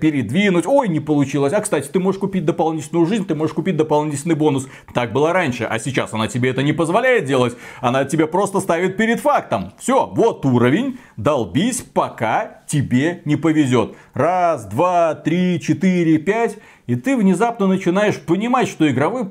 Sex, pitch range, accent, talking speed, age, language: male, 140-185 Hz, native, 165 wpm, 40-59, Russian